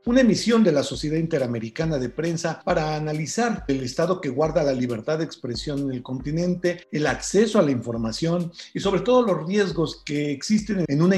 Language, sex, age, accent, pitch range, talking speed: Spanish, male, 50-69, Mexican, 130-170 Hz, 190 wpm